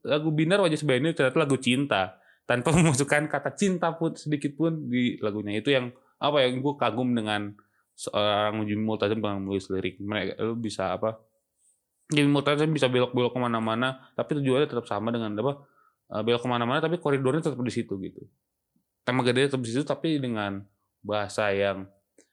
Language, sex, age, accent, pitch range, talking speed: Indonesian, male, 20-39, native, 105-140 Hz, 165 wpm